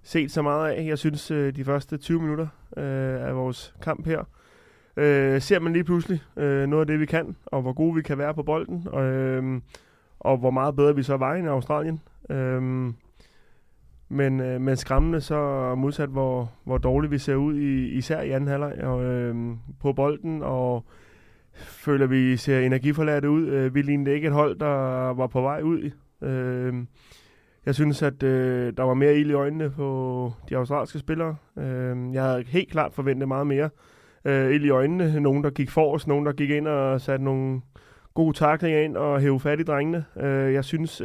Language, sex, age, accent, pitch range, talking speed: Danish, male, 20-39, native, 130-150 Hz, 185 wpm